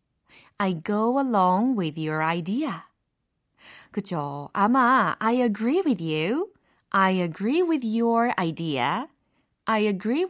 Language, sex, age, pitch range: Korean, female, 30-49, 175-255 Hz